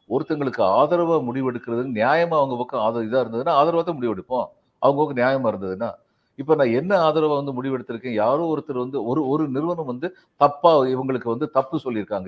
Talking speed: 155 wpm